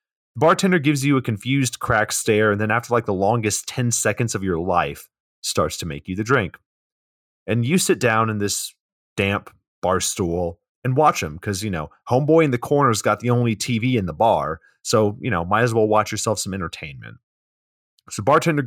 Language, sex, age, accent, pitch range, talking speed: English, male, 30-49, American, 95-120 Hz, 200 wpm